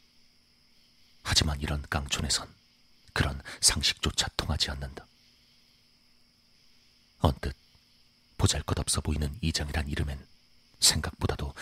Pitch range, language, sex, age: 75-90 Hz, Korean, male, 40-59